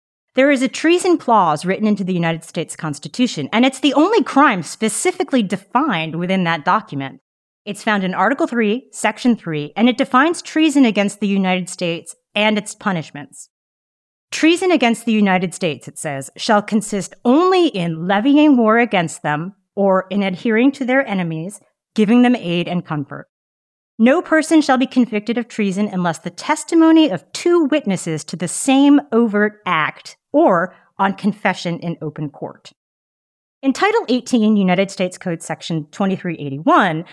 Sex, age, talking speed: female, 30-49, 155 wpm